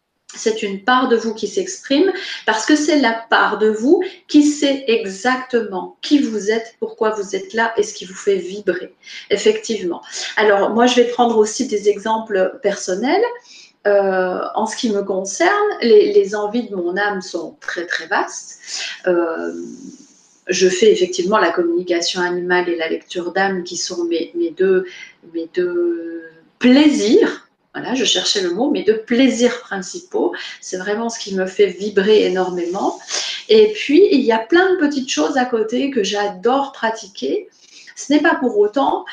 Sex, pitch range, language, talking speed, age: female, 195-280 Hz, French, 170 wpm, 30-49